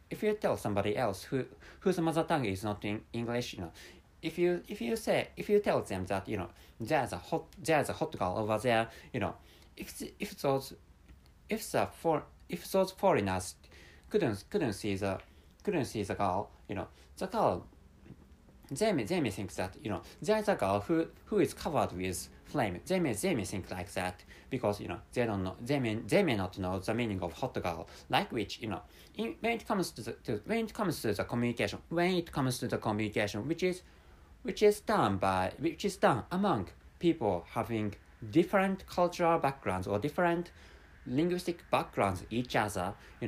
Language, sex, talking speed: English, male, 200 wpm